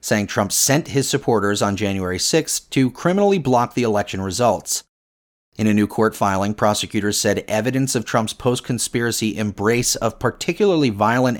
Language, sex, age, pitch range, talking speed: English, male, 30-49, 100-135 Hz, 155 wpm